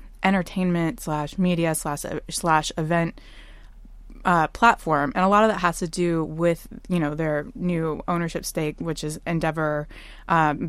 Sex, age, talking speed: female, 20-39, 150 wpm